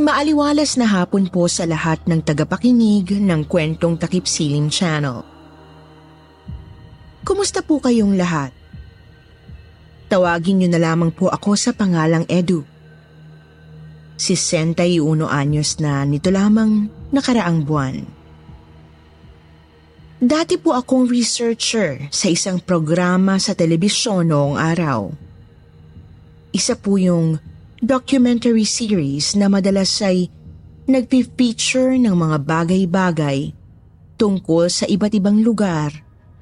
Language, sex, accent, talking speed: Filipino, female, native, 100 wpm